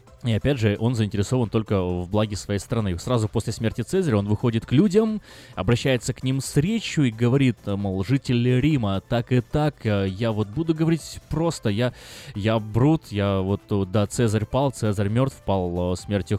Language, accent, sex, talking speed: Russian, native, male, 175 wpm